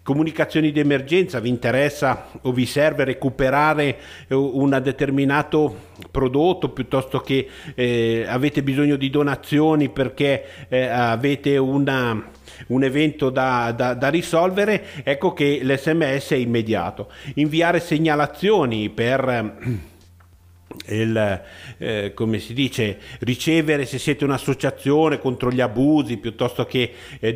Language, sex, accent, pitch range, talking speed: Italian, male, native, 120-145 Hz, 115 wpm